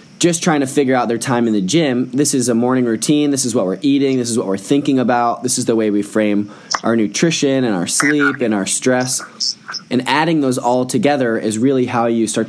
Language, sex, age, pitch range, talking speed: English, male, 20-39, 110-125 Hz, 240 wpm